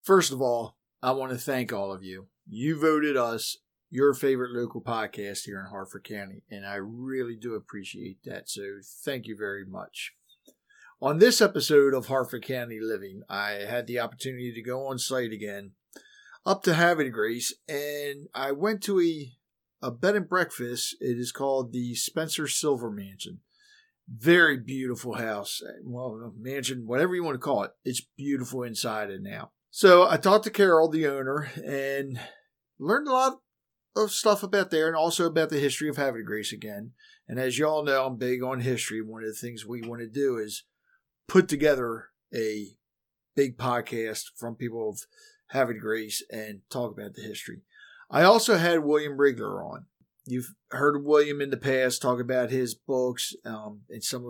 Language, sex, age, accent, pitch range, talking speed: English, male, 50-69, American, 115-150 Hz, 175 wpm